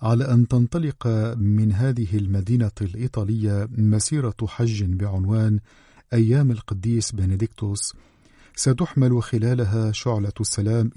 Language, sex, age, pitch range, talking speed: Arabic, male, 50-69, 105-120 Hz, 95 wpm